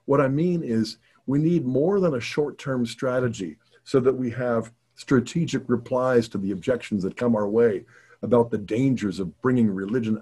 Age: 50-69